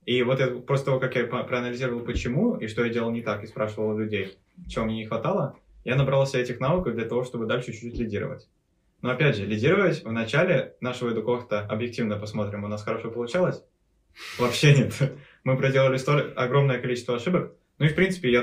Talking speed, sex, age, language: 190 wpm, male, 20-39, Russian